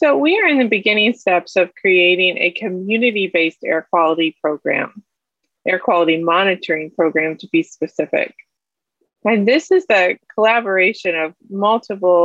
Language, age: English, 20-39